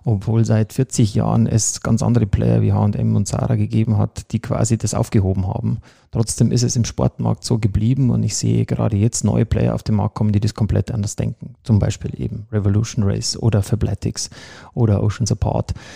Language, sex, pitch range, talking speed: German, male, 105-120 Hz, 195 wpm